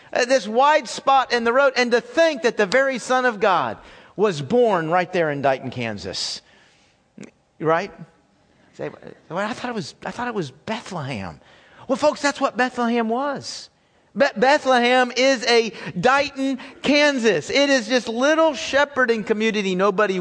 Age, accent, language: 40-59, American, English